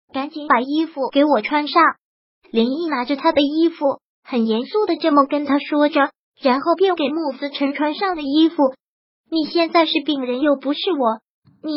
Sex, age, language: male, 20-39, Chinese